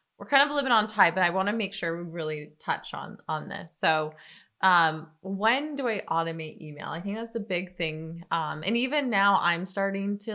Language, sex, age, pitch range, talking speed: English, female, 20-39, 175-220 Hz, 220 wpm